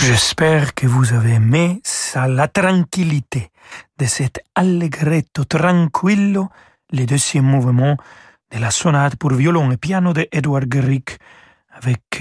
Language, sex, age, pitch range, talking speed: French, male, 40-59, 130-170 Hz, 130 wpm